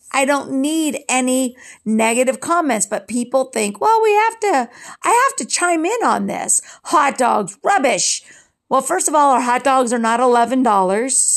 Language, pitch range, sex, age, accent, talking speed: English, 230-285 Hz, female, 50-69, American, 175 wpm